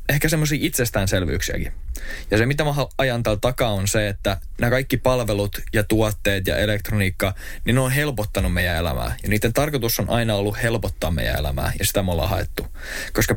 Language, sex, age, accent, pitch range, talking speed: Finnish, male, 20-39, native, 95-120 Hz, 185 wpm